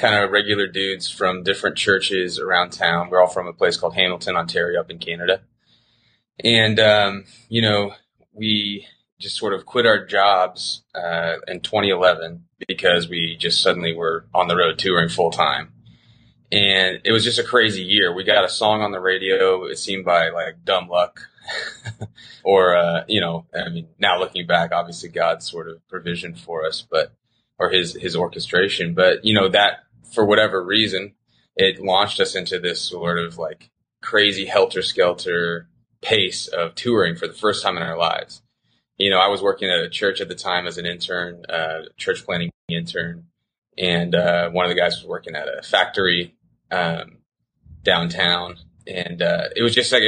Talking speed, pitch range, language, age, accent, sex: 180 wpm, 85-105 Hz, English, 20-39, American, male